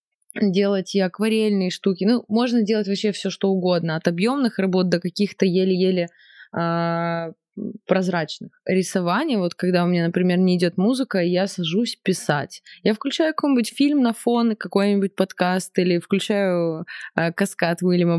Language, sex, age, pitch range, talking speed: Russian, female, 20-39, 175-215 Hz, 145 wpm